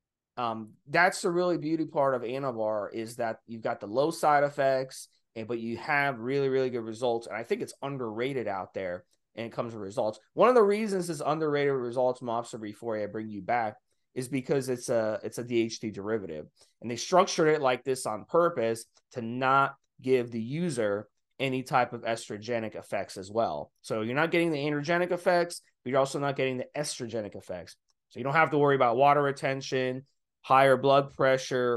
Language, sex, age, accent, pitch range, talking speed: English, male, 30-49, American, 115-150 Hz, 195 wpm